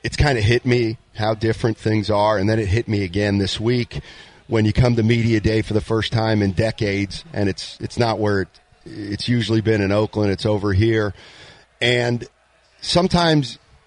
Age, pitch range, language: 40-59, 105-120 Hz, English